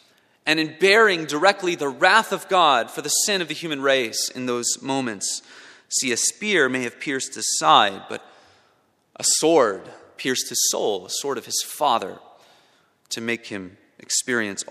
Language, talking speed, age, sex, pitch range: English, 165 wpm, 30-49, male, 130-185 Hz